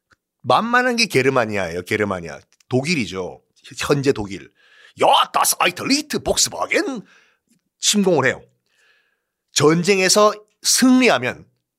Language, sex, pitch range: Korean, male, 155-240 Hz